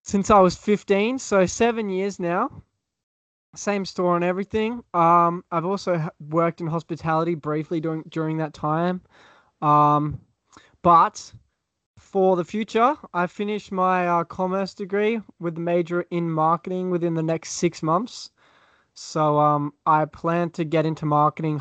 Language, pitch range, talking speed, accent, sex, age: English, 150-180 Hz, 145 wpm, Australian, male, 20-39